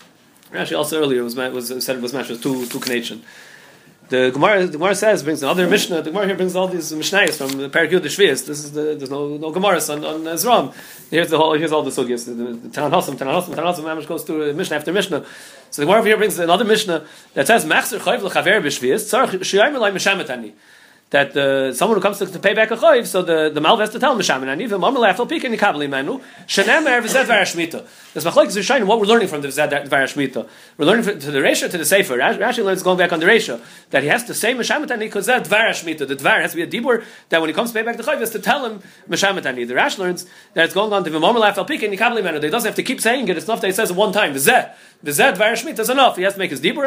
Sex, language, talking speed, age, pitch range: male, English, 250 wpm, 30-49, 150-215 Hz